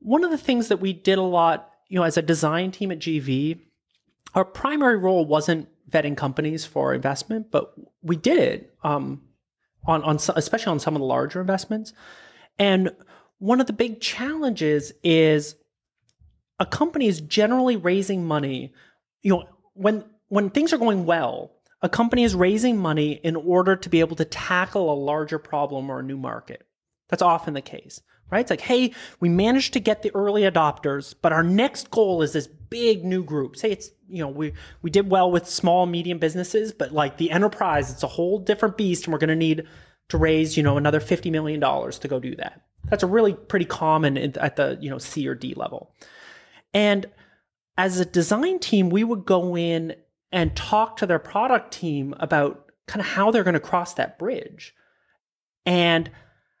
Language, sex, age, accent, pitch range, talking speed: English, male, 30-49, American, 155-210 Hz, 190 wpm